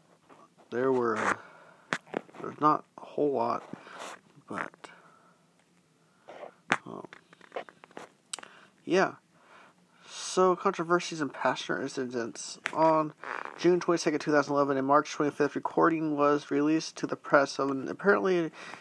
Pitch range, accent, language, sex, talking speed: 135-160 Hz, American, English, male, 115 wpm